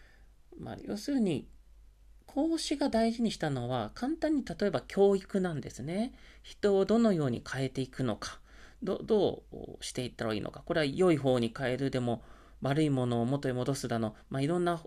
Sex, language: male, Japanese